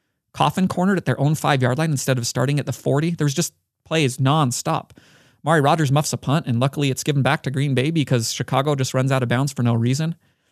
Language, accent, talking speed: English, American, 235 wpm